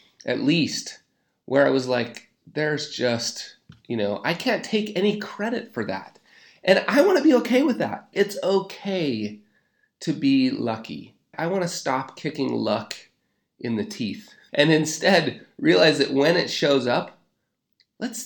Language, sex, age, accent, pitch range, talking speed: English, male, 30-49, American, 115-160 Hz, 160 wpm